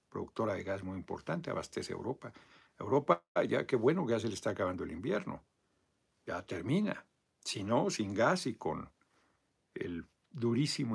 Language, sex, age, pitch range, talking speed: Spanish, male, 60-79, 100-135 Hz, 155 wpm